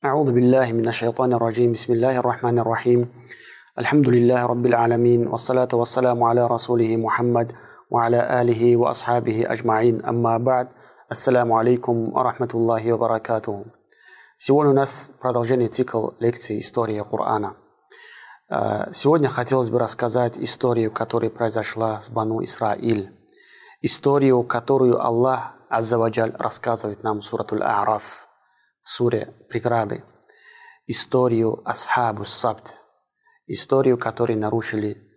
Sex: male